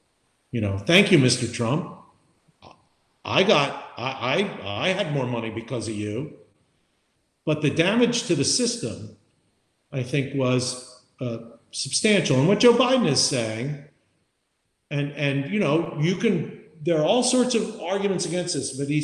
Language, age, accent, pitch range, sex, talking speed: English, 50-69, American, 130-175 Hz, male, 160 wpm